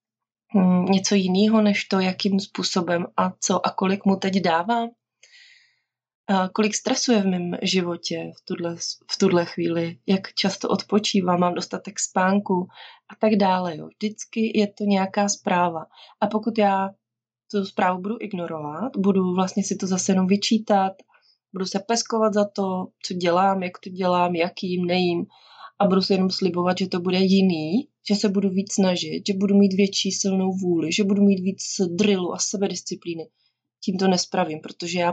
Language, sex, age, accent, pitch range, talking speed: Czech, female, 20-39, native, 175-205 Hz, 160 wpm